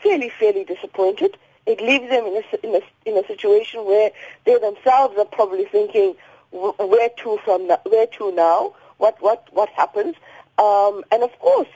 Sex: female